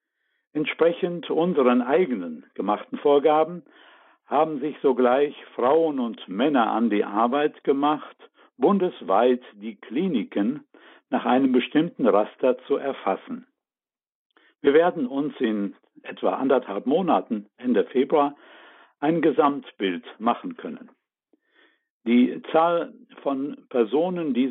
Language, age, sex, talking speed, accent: German, 60-79, male, 105 wpm, German